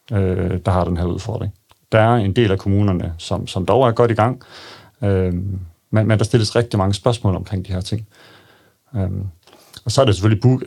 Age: 40-59